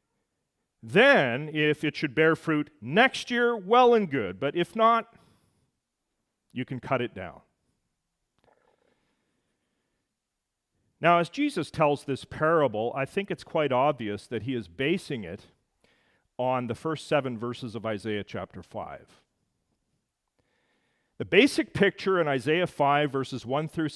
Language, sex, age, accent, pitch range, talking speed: English, male, 40-59, American, 125-180 Hz, 135 wpm